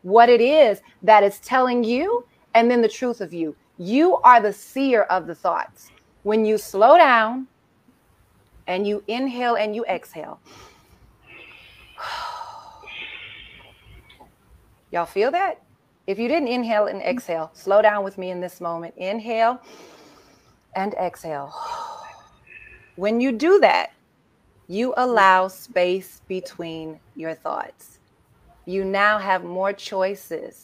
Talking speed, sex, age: 125 wpm, female, 30-49